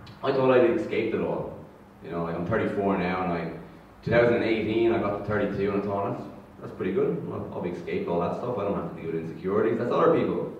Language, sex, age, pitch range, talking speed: English, male, 30-49, 90-110 Hz, 240 wpm